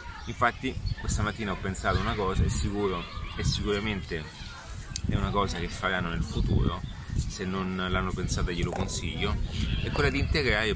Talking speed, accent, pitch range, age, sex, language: 155 wpm, native, 90-105 Hz, 30-49, male, Italian